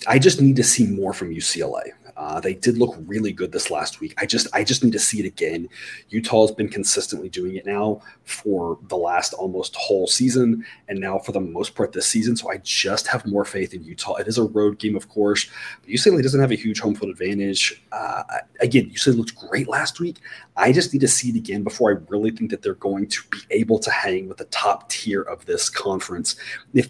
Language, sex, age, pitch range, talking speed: English, male, 30-49, 105-175 Hz, 235 wpm